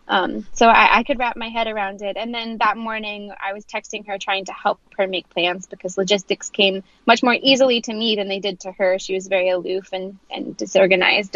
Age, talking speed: 10-29, 235 wpm